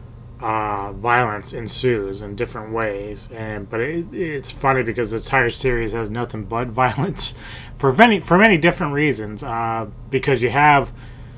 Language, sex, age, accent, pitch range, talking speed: English, male, 30-49, American, 110-130 Hz, 155 wpm